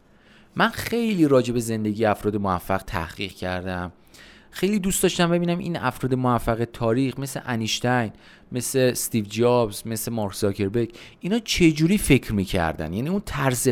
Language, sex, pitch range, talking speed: Persian, male, 105-155 Hz, 140 wpm